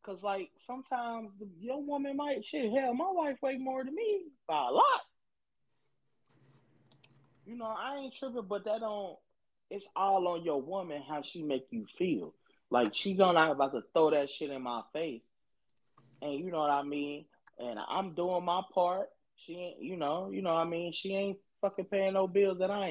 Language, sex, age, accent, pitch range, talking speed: English, male, 20-39, American, 120-190 Hz, 200 wpm